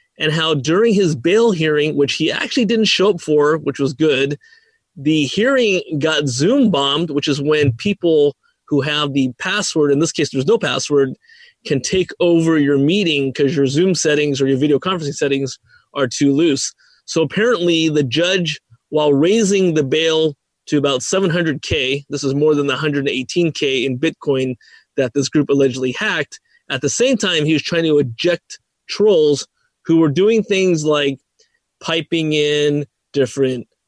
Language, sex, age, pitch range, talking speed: English, male, 30-49, 145-190 Hz, 170 wpm